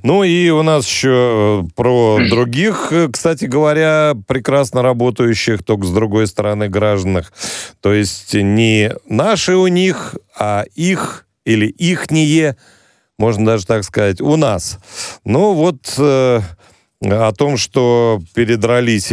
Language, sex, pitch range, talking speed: Russian, male, 100-125 Hz, 120 wpm